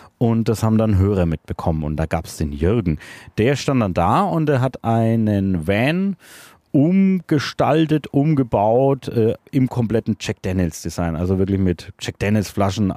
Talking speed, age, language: 155 wpm, 30-49, German